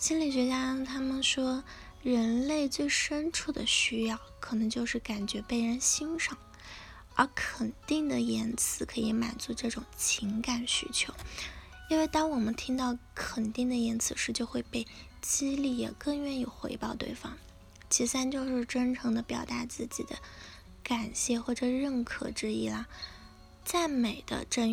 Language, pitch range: Chinese, 220-255 Hz